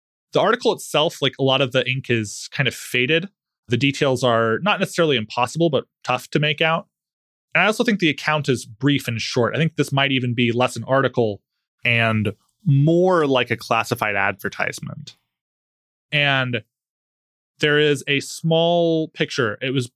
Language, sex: English, male